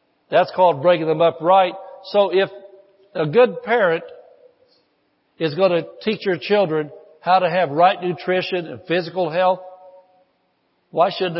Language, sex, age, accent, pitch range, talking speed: English, male, 60-79, American, 150-195 Hz, 140 wpm